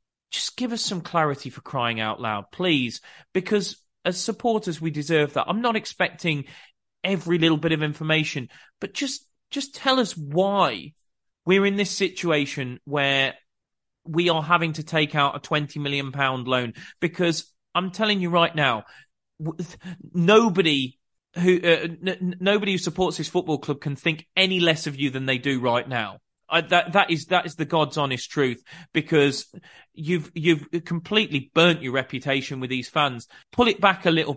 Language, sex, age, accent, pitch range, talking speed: English, male, 30-49, British, 135-175 Hz, 170 wpm